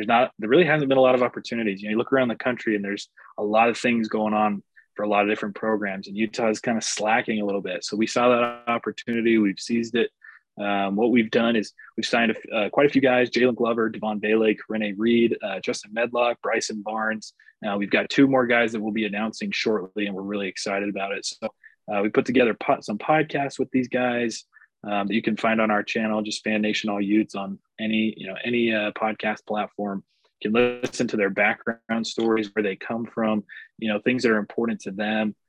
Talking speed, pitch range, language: 235 wpm, 105-120 Hz, English